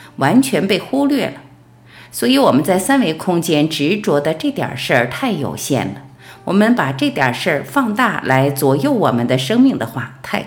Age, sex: 50-69, female